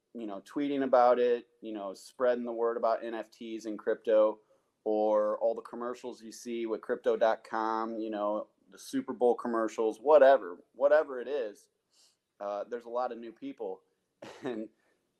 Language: English